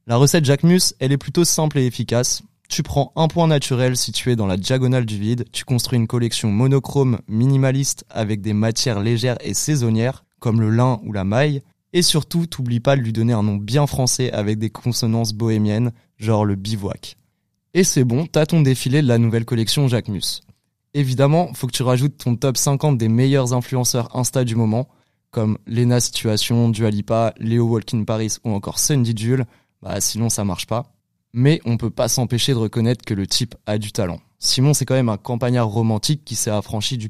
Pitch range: 110-130 Hz